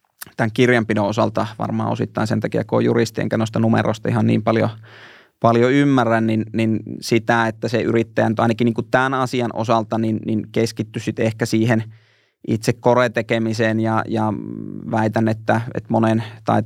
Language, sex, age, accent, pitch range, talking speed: Finnish, male, 20-39, native, 110-120 Hz, 150 wpm